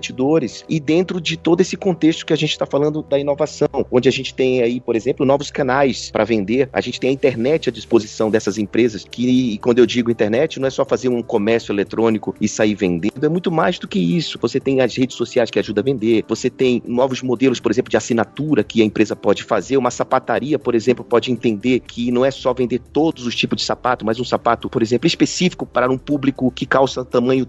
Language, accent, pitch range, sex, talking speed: Portuguese, Brazilian, 120-150 Hz, male, 230 wpm